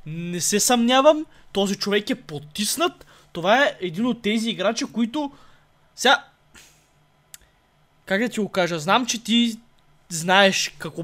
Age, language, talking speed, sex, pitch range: 20-39, Bulgarian, 135 wpm, male, 165-225 Hz